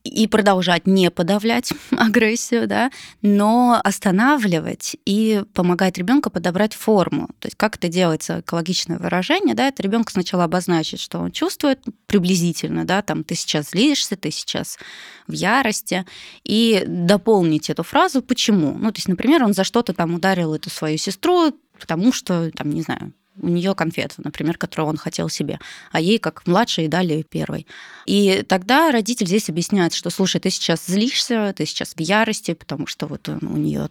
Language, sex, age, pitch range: Russian, female, 20-39, 170-220 Hz